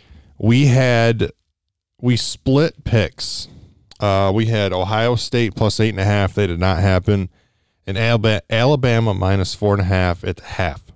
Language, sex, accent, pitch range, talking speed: English, male, American, 95-115 Hz, 160 wpm